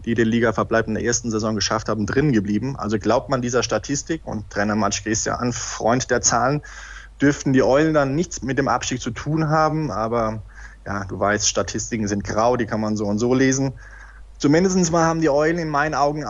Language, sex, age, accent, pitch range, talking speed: German, male, 20-39, German, 110-130 Hz, 215 wpm